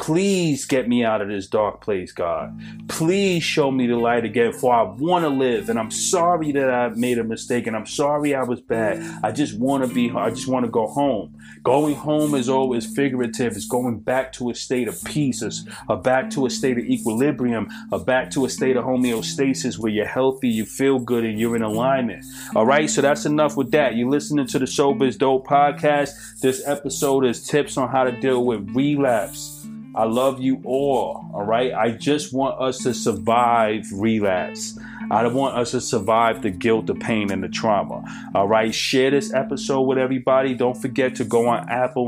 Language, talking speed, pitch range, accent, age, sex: English, 210 wpm, 115-140 Hz, American, 30-49, male